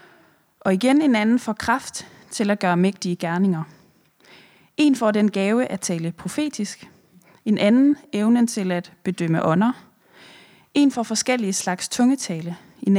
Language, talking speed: Danish, 145 wpm